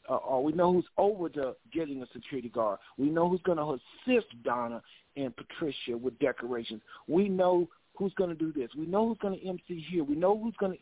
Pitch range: 135-180 Hz